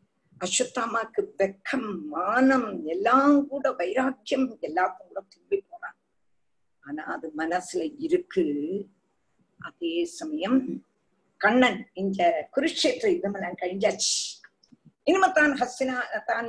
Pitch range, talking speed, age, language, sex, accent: 200-320 Hz, 70 wpm, 50-69, Tamil, female, native